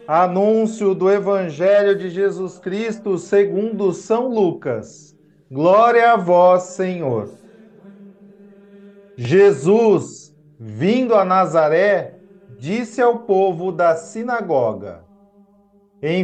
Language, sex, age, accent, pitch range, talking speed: Portuguese, male, 40-59, Brazilian, 180-215 Hz, 85 wpm